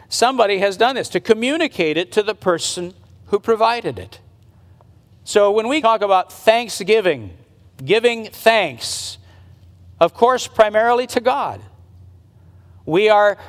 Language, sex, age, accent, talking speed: English, male, 50-69, American, 125 wpm